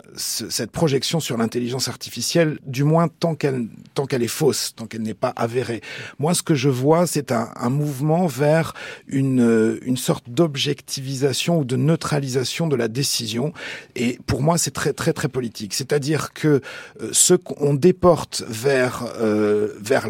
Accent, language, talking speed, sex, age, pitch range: French, French, 160 wpm, male, 40-59, 120-155 Hz